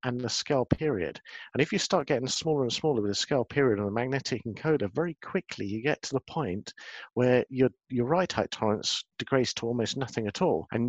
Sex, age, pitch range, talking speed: male, 50-69, 120-150 Hz, 220 wpm